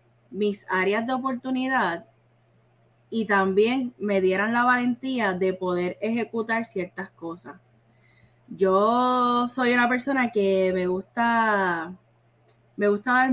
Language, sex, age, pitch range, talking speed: Spanish, female, 20-39, 180-230 Hz, 115 wpm